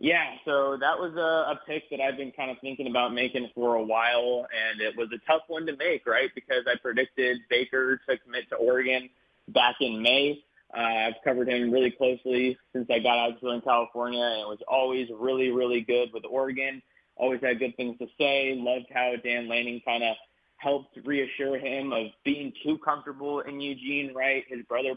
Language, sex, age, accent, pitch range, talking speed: English, male, 20-39, American, 120-130 Hz, 195 wpm